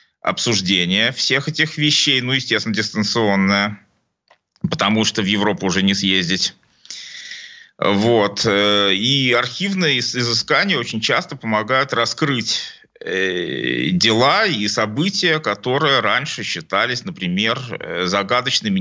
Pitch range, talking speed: 105-150 Hz, 95 wpm